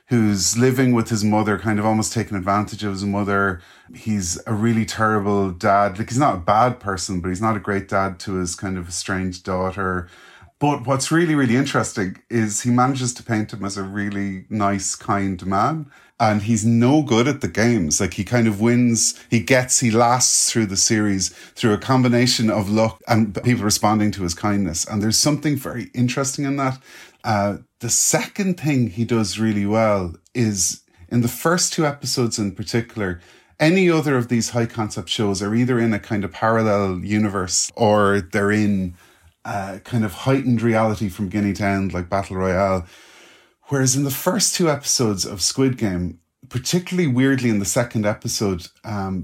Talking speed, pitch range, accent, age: 185 wpm, 100-120 Hz, Irish, 30-49